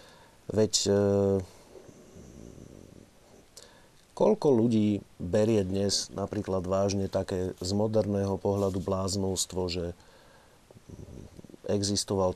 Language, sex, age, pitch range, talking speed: Slovak, male, 40-59, 100-125 Hz, 70 wpm